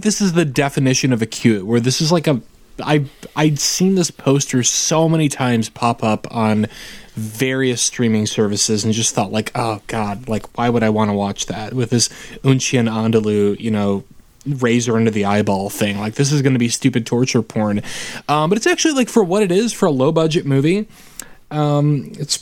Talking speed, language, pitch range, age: 205 wpm, English, 115-160 Hz, 20-39